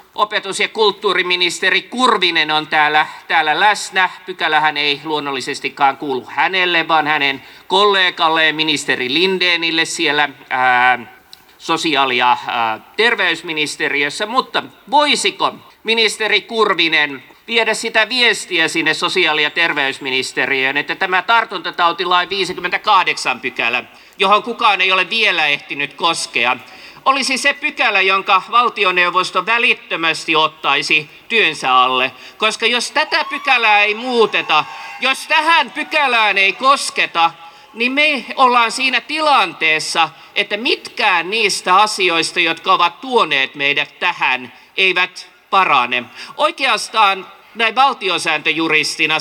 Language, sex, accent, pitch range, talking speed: Finnish, male, native, 155-225 Hz, 105 wpm